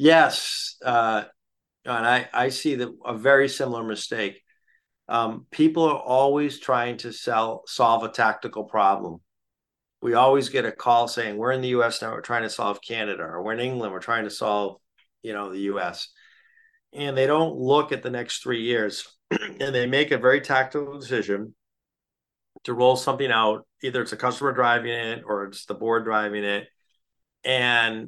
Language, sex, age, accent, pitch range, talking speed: English, male, 50-69, American, 110-130 Hz, 175 wpm